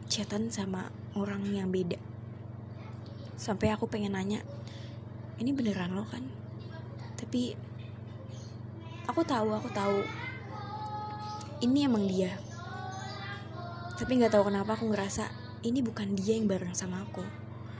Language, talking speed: Indonesian, 115 wpm